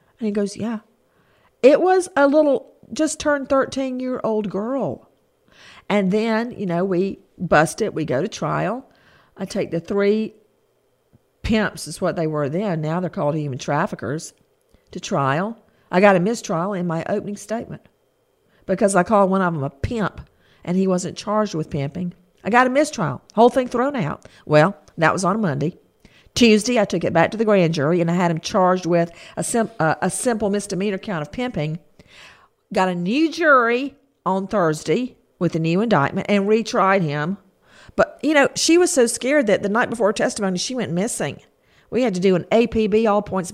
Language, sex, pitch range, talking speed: English, female, 175-225 Hz, 190 wpm